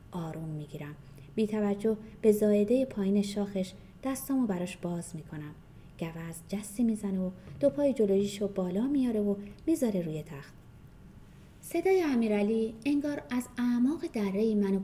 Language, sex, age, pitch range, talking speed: Persian, female, 30-49, 165-225 Hz, 130 wpm